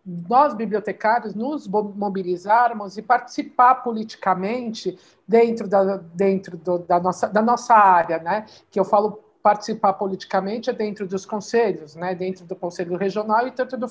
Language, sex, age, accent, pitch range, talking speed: Portuguese, male, 50-69, Brazilian, 205-265 Hz, 145 wpm